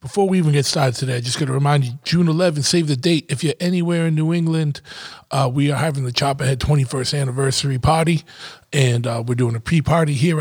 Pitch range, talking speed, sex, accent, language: 130-155 Hz, 230 wpm, male, American, English